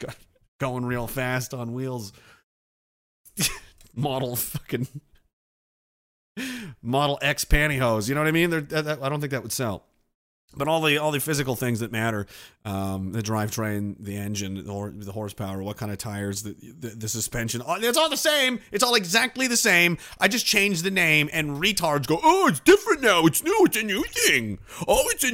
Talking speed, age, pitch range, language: 185 wpm, 30-49, 130-205 Hz, English